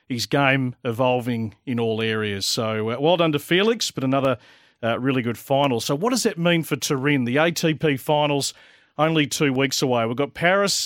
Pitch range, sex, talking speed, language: 130-160 Hz, male, 195 wpm, English